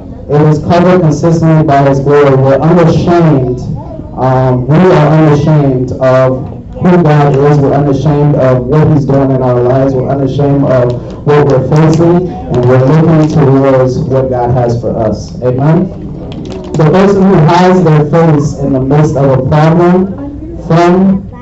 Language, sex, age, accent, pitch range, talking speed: English, male, 30-49, American, 130-160 Hz, 155 wpm